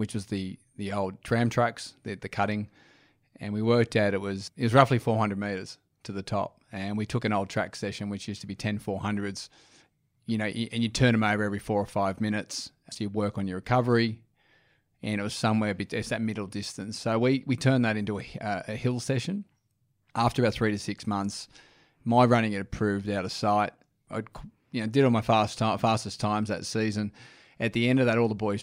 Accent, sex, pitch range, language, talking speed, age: Australian, male, 100-115 Hz, English, 225 wpm, 20-39